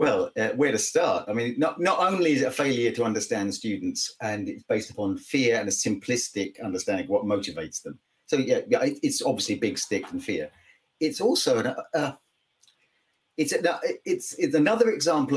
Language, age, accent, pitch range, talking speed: English, 40-59, British, 120-185 Hz, 185 wpm